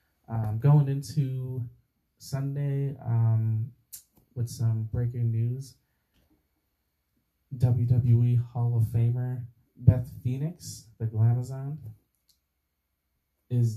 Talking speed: 80 wpm